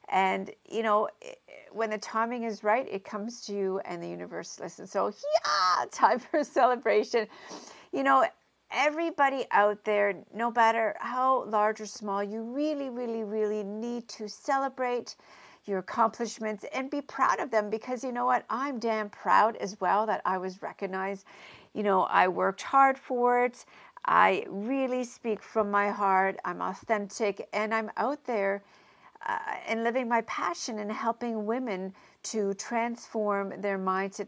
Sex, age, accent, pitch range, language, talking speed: female, 50-69, American, 200-245 Hz, English, 160 wpm